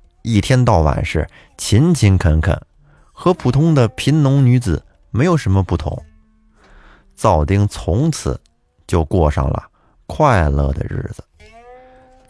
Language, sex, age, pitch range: Chinese, male, 30-49, 80-135 Hz